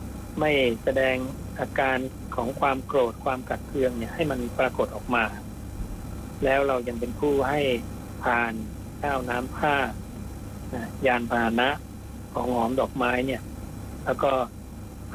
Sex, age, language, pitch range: male, 60-79, Thai, 105-130 Hz